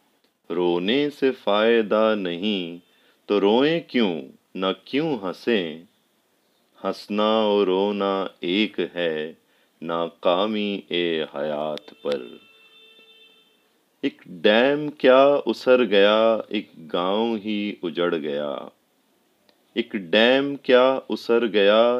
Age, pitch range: 30-49, 95-115 Hz